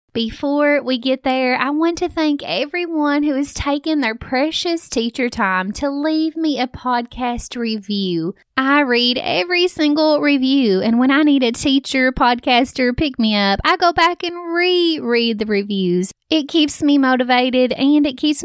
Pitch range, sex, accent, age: 235-295 Hz, female, American, 20-39